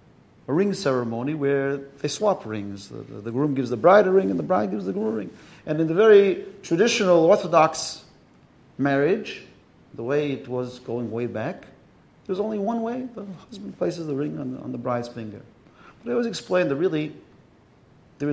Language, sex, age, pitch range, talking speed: English, male, 40-59, 120-170 Hz, 190 wpm